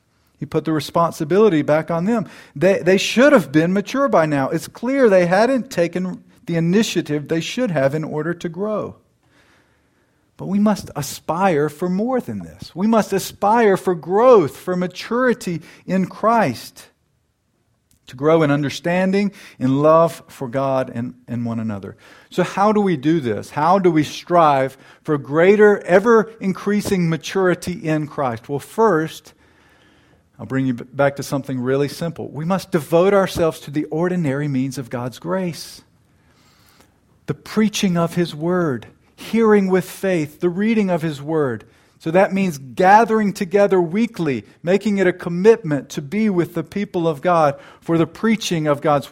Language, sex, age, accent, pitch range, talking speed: English, male, 40-59, American, 140-195 Hz, 160 wpm